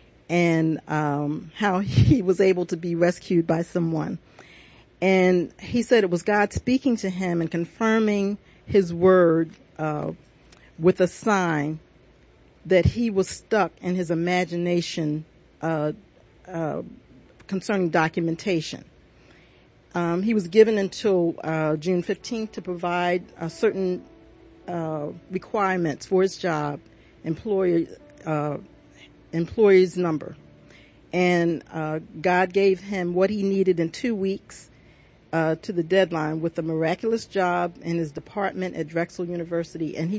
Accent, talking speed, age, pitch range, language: American, 130 wpm, 40-59, 160-190 Hz, English